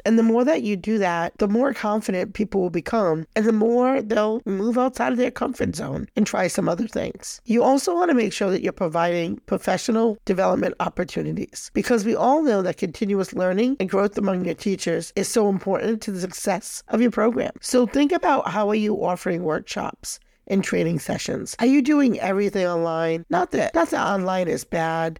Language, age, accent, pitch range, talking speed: English, 50-69, American, 180-225 Hz, 200 wpm